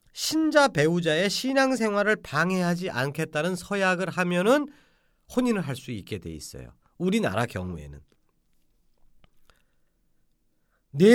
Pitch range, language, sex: 145-225 Hz, Korean, male